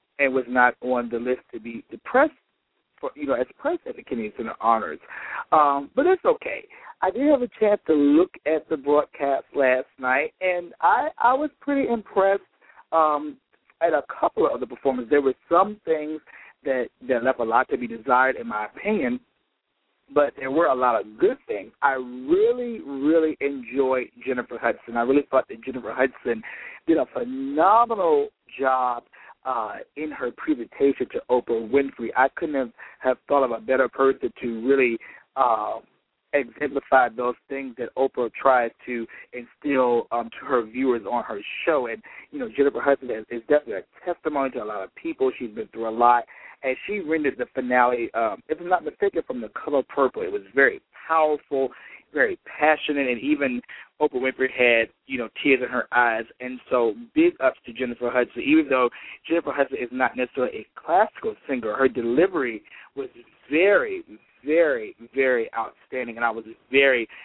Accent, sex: American, male